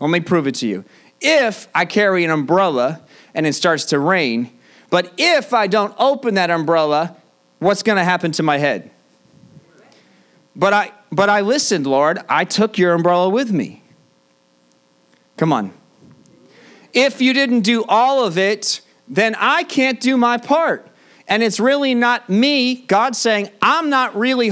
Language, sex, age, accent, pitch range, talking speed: English, male, 40-59, American, 165-250 Hz, 165 wpm